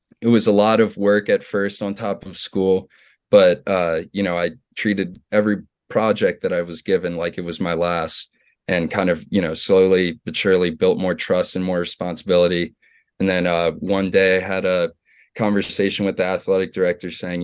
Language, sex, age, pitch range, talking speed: English, male, 20-39, 90-105 Hz, 195 wpm